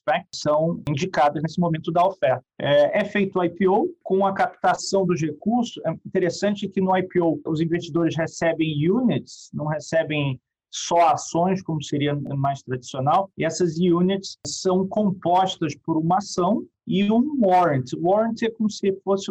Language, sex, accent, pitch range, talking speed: Portuguese, male, Brazilian, 160-200 Hz, 155 wpm